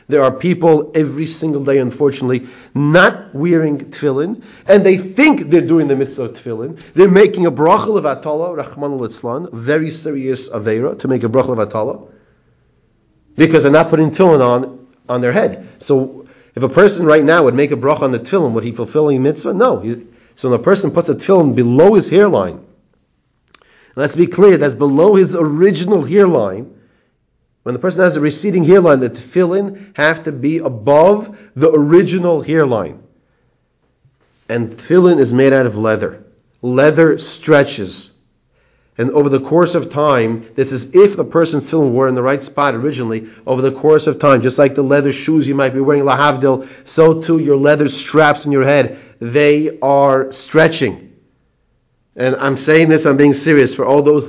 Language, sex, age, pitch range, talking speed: English, male, 40-59, 130-160 Hz, 175 wpm